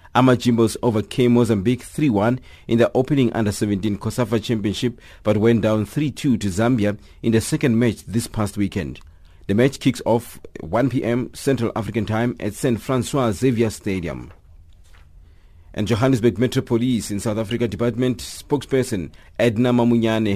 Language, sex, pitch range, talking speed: English, male, 100-120 Hz, 135 wpm